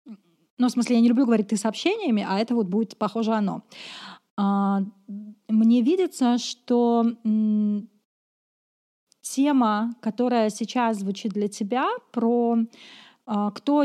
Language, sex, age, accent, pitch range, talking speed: Russian, female, 30-49, native, 205-250 Hz, 115 wpm